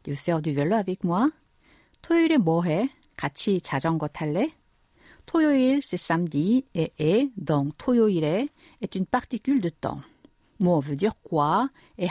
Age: 50-69